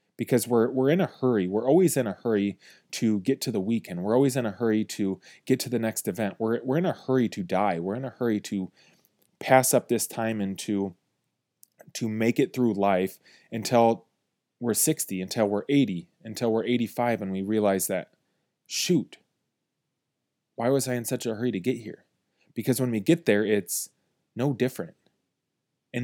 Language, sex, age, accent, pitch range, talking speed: English, male, 20-39, American, 105-130 Hz, 190 wpm